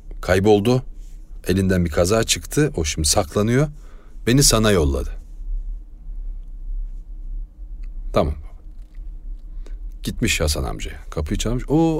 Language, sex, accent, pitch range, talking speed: Turkish, male, native, 75-100 Hz, 90 wpm